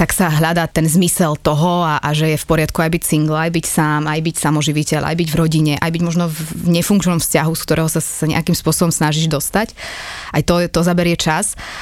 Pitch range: 155-175 Hz